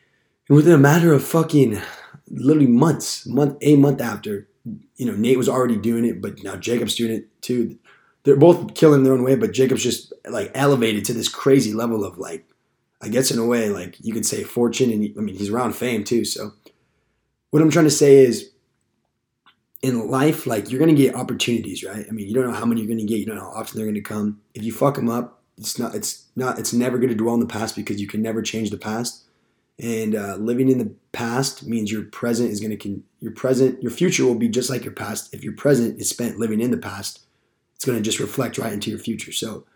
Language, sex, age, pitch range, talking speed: English, male, 20-39, 110-130 Hz, 240 wpm